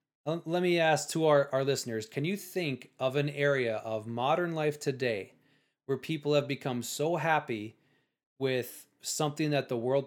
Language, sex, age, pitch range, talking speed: English, male, 20-39, 120-145 Hz, 165 wpm